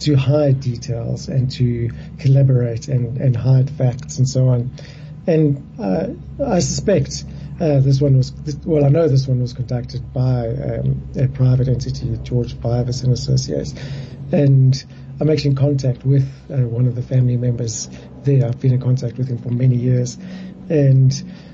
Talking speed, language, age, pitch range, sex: 165 wpm, English, 60-79, 125-145 Hz, male